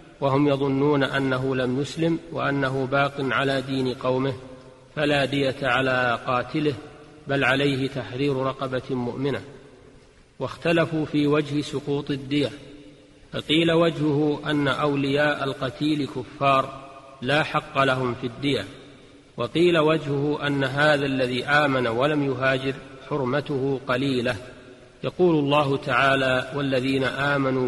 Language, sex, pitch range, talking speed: Arabic, male, 130-145 Hz, 110 wpm